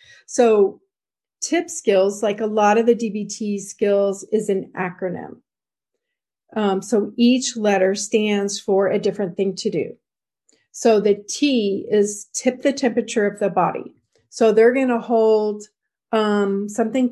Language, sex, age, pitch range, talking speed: English, female, 40-59, 200-235 Hz, 145 wpm